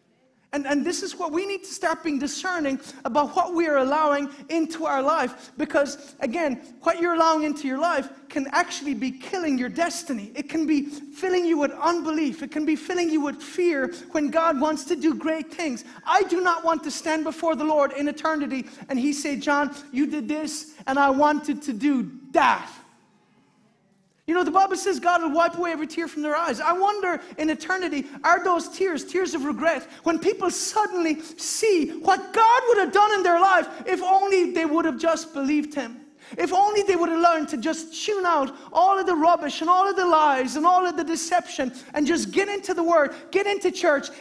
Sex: male